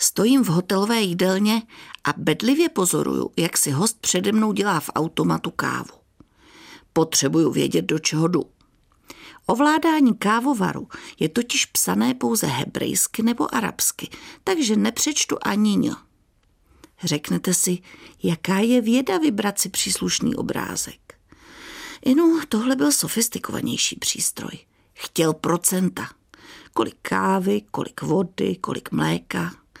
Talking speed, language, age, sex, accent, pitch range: 115 wpm, Czech, 50-69, female, native, 190-280 Hz